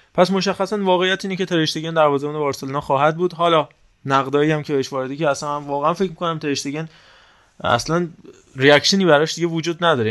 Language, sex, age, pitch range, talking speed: Persian, male, 20-39, 130-160 Hz, 160 wpm